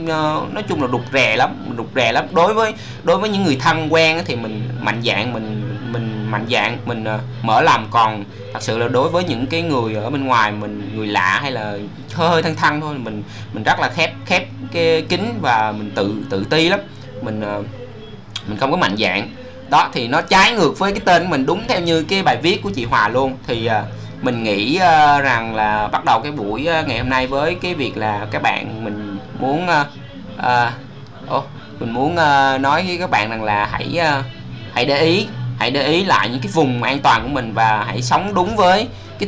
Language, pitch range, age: Vietnamese, 110-150 Hz, 20-39